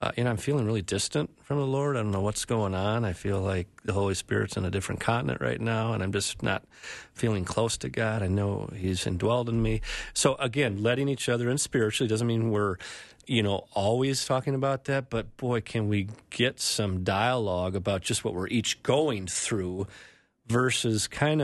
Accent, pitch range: American, 95-120 Hz